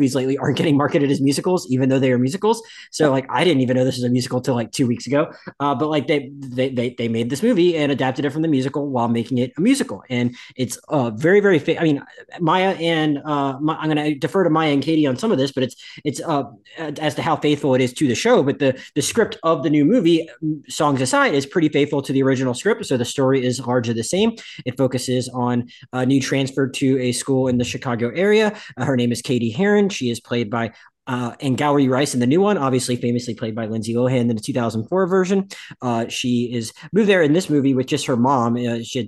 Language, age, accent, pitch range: English, 20-39, American, 125-155 Hz